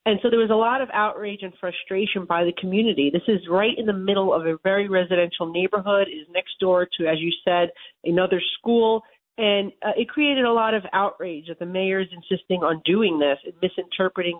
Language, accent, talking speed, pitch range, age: English, American, 215 wpm, 175-215 Hz, 40-59